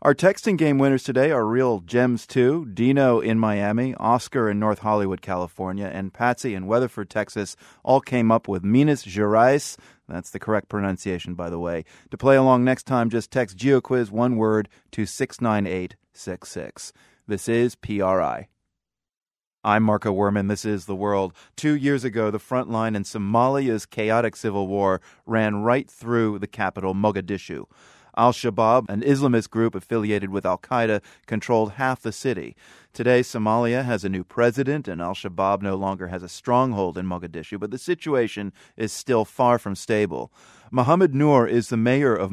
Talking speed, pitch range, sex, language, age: 160 wpm, 100-125 Hz, male, English, 30-49